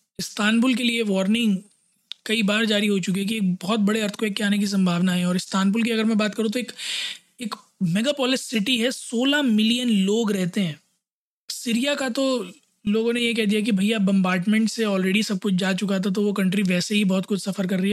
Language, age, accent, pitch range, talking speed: Hindi, 20-39, native, 190-225 Hz, 230 wpm